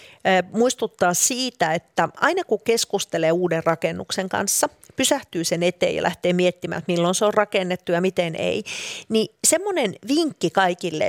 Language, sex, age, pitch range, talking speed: Finnish, female, 40-59, 175-230 Hz, 140 wpm